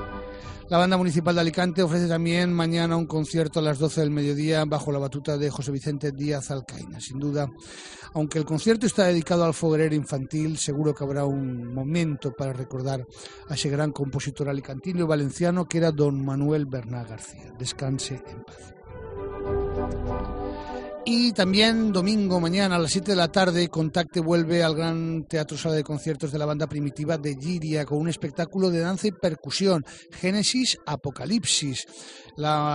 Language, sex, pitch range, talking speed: Spanish, male, 140-175 Hz, 165 wpm